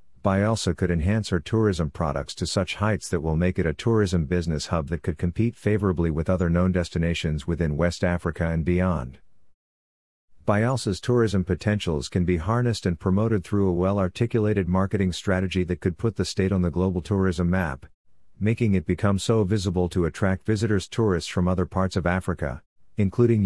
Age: 50-69